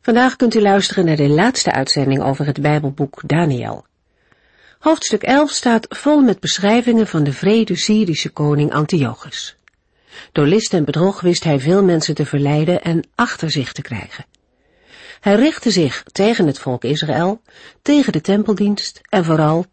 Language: Dutch